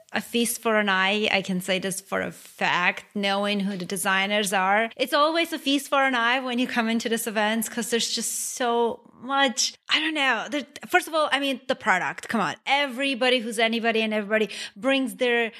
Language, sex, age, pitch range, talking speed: English, female, 30-49, 210-270 Hz, 210 wpm